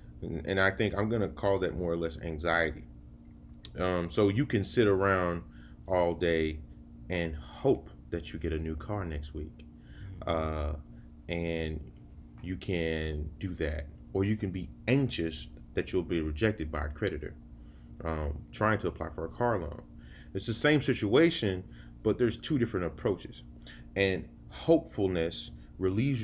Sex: male